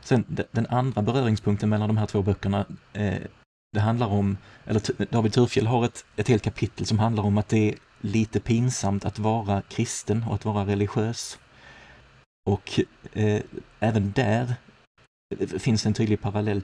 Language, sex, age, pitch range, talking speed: Swedish, male, 30-49, 100-110 Hz, 150 wpm